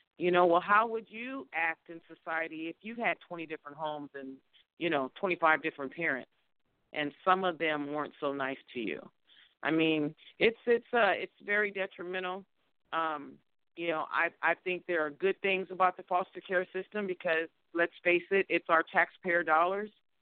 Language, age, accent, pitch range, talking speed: English, 40-59, American, 150-180 Hz, 180 wpm